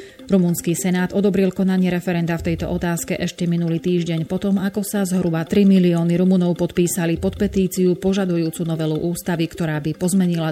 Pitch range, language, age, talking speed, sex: 160-185 Hz, Slovak, 30-49, 155 wpm, female